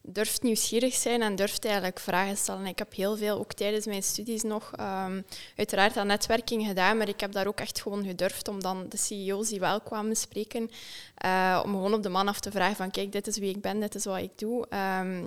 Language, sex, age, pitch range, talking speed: Dutch, female, 20-39, 195-220 Hz, 235 wpm